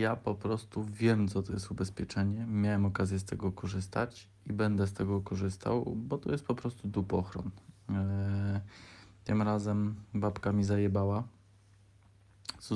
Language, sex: Polish, male